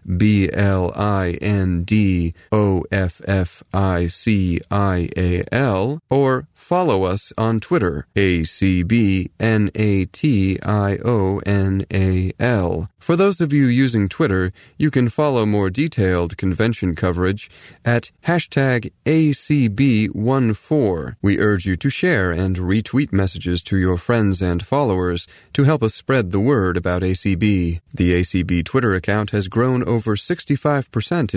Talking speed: 100 wpm